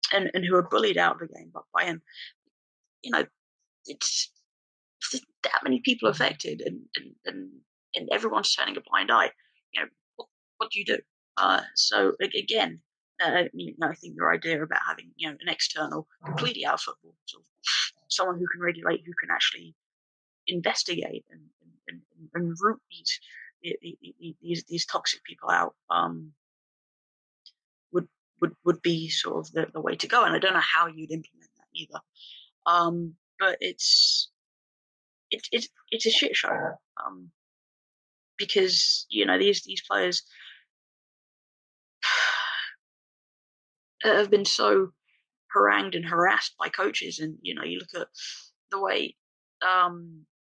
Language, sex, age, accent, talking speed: English, female, 20-39, British, 150 wpm